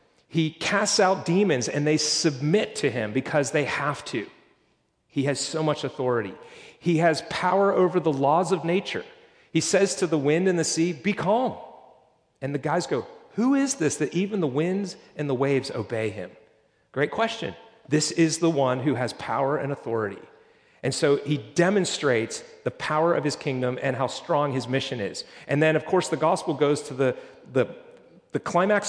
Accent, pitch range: American, 135-170 Hz